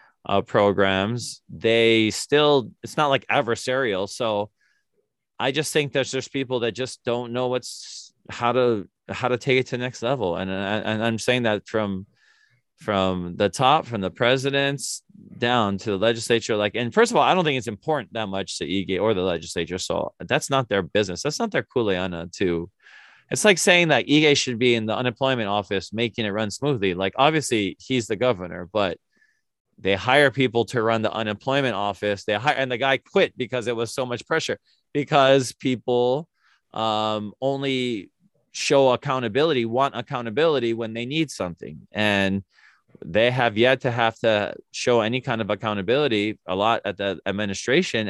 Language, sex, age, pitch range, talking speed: English, male, 20-39, 105-130 Hz, 180 wpm